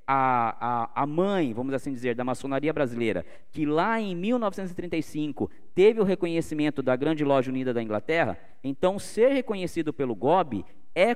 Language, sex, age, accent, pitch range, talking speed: Portuguese, male, 20-39, Brazilian, 130-180 Hz, 155 wpm